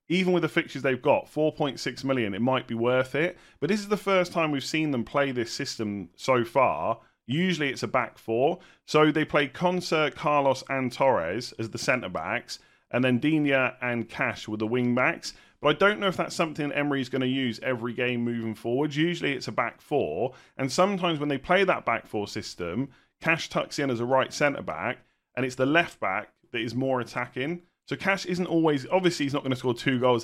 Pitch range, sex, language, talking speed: 120-155 Hz, male, English, 210 wpm